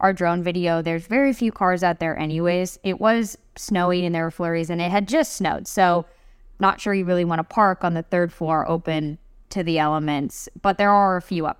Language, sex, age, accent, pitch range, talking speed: English, female, 10-29, American, 165-205 Hz, 230 wpm